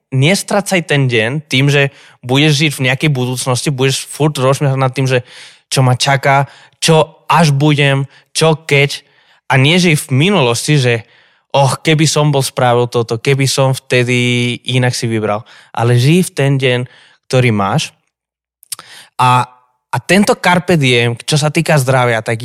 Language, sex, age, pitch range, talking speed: Slovak, male, 20-39, 125-160 Hz, 150 wpm